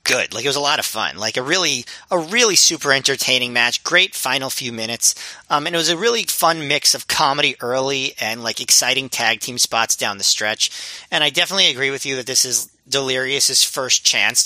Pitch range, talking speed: 115-140 Hz, 215 wpm